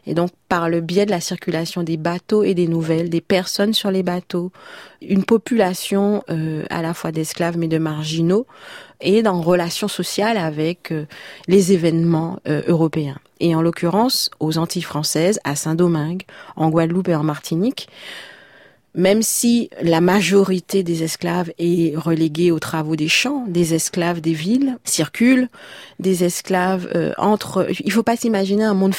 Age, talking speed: 30-49, 165 wpm